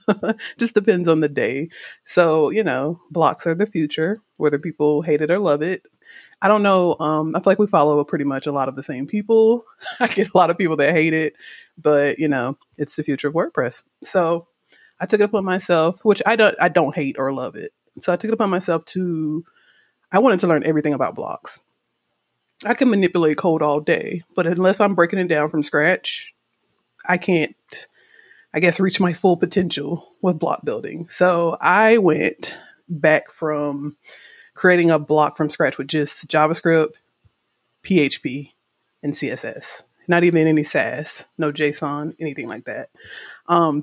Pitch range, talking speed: 150-190 Hz, 180 wpm